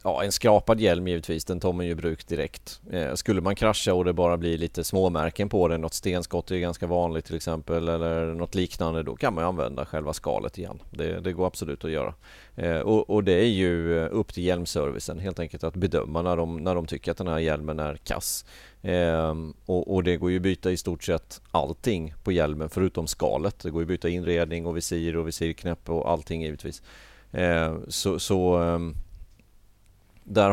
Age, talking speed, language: 30-49, 205 wpm, Swedish